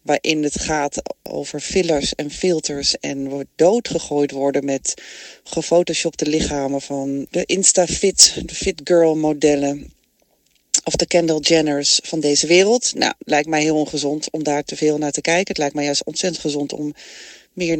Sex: female